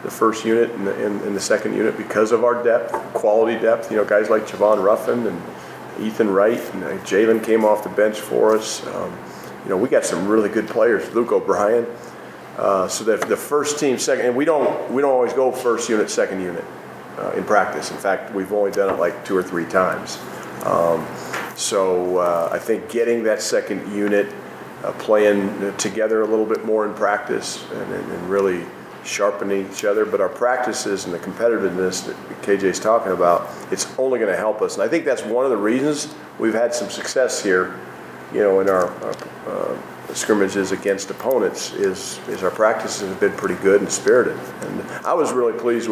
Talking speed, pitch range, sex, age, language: 195 wpm, 100-115 Hz, male, 40-59, English